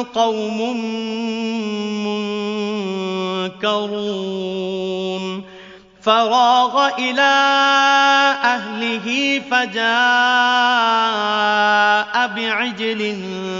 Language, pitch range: Arabic, 205-245 Hz